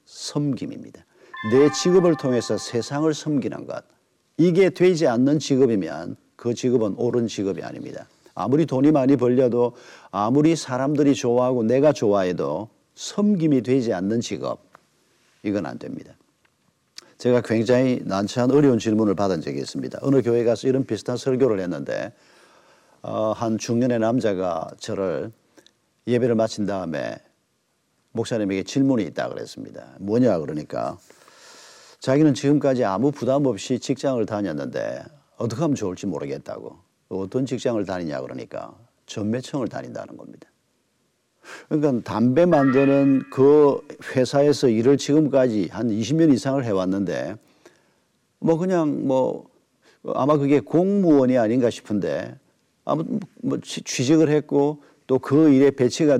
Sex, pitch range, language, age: male, 120-145 Hz, Korean, 50-69